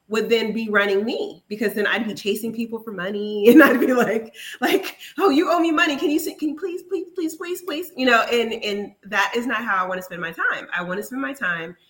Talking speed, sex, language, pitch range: 265 wpm, female, English, 180-235 Hz